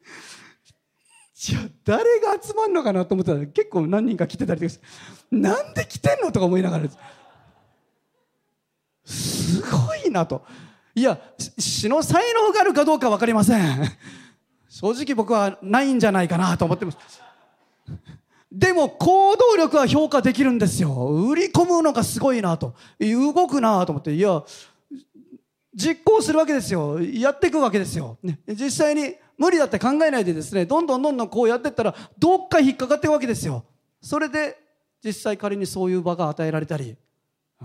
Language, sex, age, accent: Japanese, male, 40-59, native